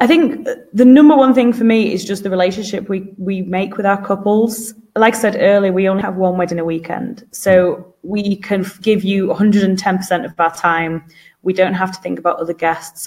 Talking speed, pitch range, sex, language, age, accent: 210 wpm, 175-225 Hz, female, English, 20-39, British